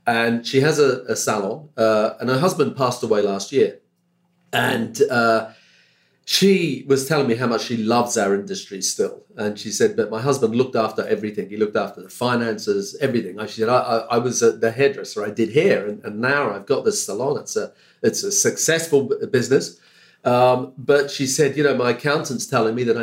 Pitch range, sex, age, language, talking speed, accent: 115-190 Hz, male, 40-59, English, 200 wpm, British